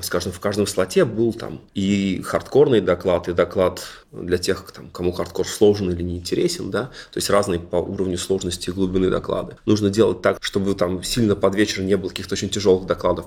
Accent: native